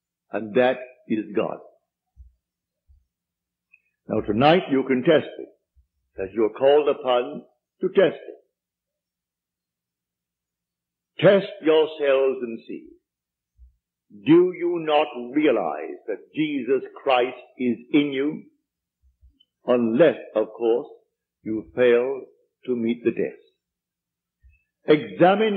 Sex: male